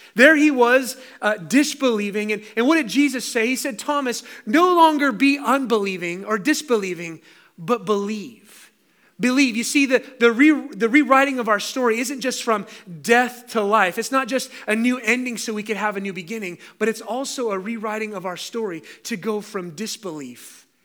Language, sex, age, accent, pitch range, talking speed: English, male, 30-49, American, 205-255 Hz, 185 wpm